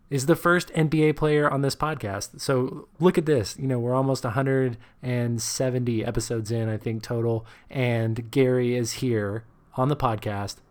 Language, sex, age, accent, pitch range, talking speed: English, male, 20-39, American, 115-145 Hz, 165 wpm